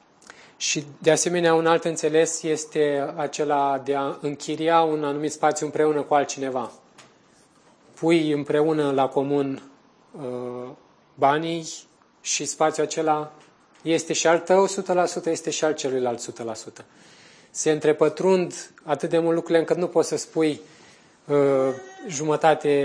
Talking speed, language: 130 wpm, Romanian